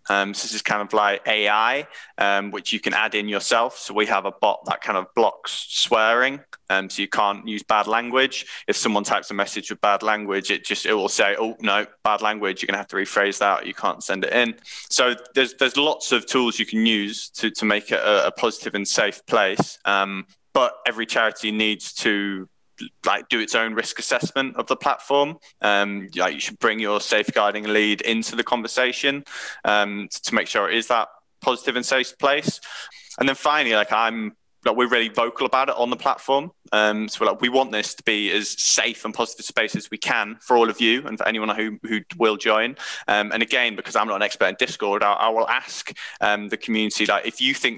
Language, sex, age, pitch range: English, male, 20-39, 105-125 Hz